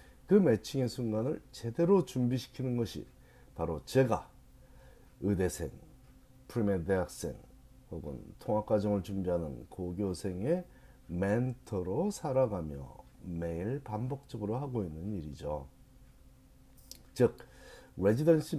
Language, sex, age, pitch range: Korean, male, 40-59, 85-130 Hz